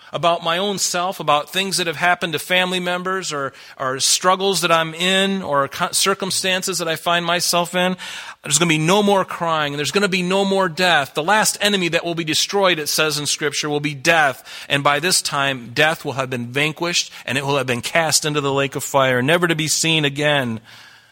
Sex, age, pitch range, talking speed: male, 40-59, 130-170 Hz, 225 wpm